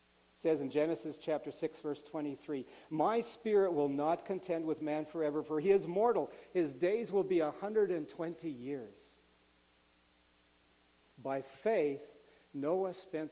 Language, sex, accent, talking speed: English, male, American, 135 wpm